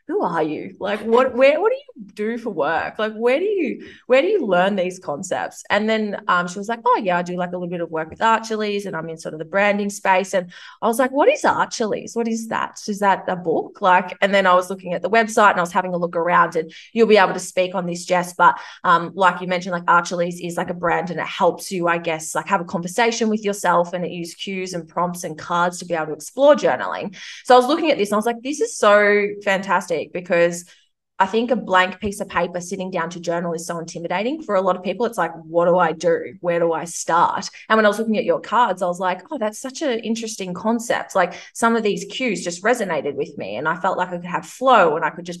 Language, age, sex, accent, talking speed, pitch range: English, 20-39, female, Australian, 270 wpm, 175-230 Hz